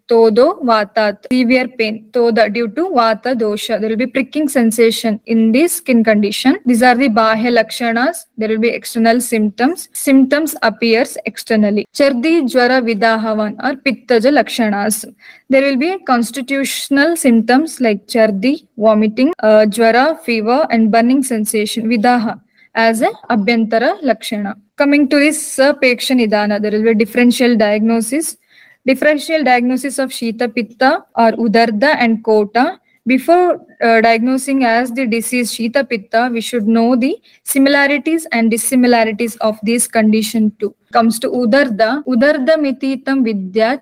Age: 20-39